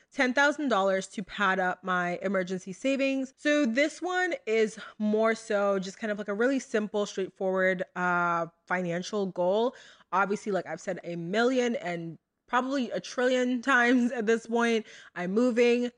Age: 20-39